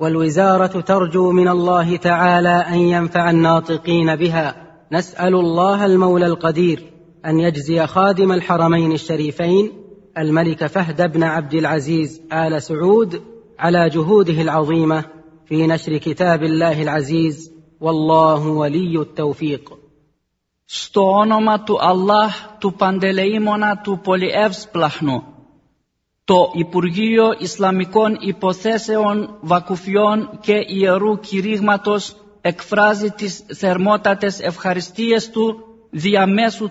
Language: Greek